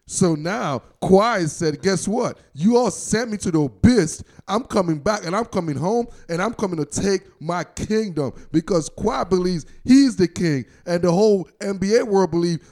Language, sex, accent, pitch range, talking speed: English, male, American, 160-210 Hz, 185 wpm